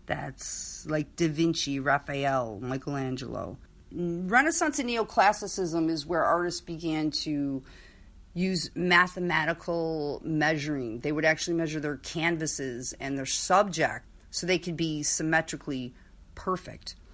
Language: English